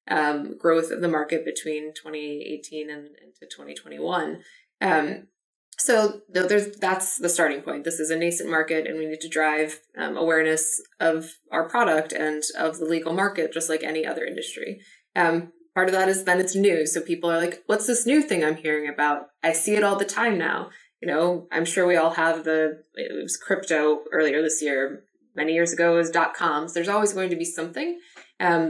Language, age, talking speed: English, 20-39, 200 wpm